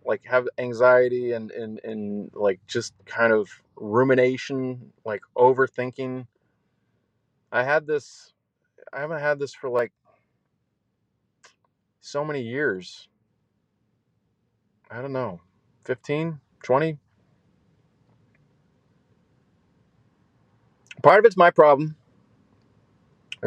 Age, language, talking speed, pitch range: 30-49, English, 90 wpm, 105-135 Hz